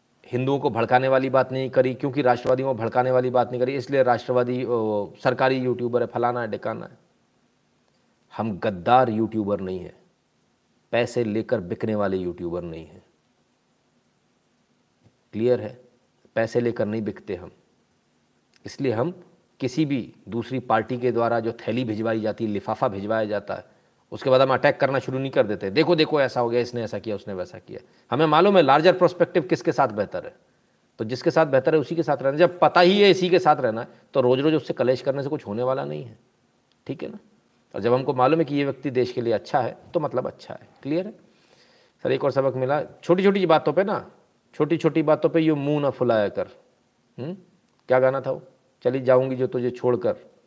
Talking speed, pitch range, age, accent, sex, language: 200 wpm, 115-145 Hz, 40-59, native, male, Hindi